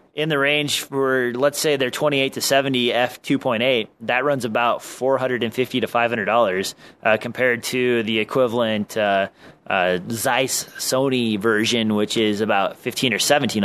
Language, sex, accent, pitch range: English, male, American, 115-135 Hz